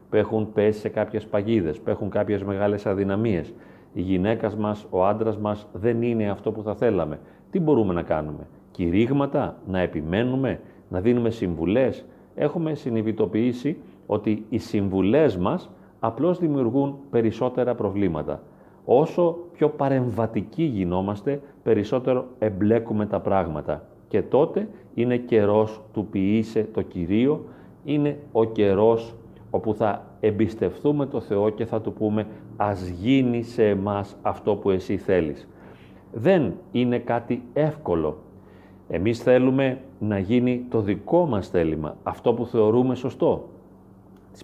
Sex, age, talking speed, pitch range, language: male, 40-59, 130 wpm, 100-125 Hz, Greek